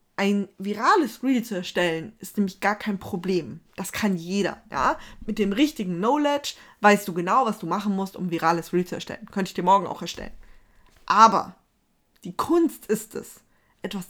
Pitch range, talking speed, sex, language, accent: 185-235 Hz, 180 wpm, female, German, German